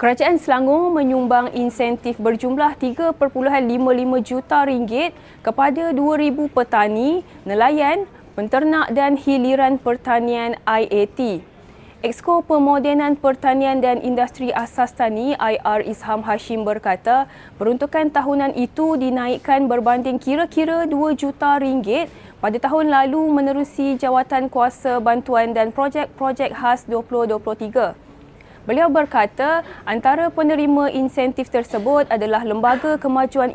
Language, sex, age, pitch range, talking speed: Malay, female, 20-39, 235-280 Hz, 100 wpm